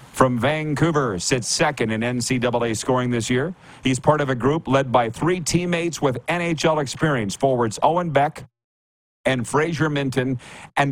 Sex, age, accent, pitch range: male, 50-69, American, 115-145 Hz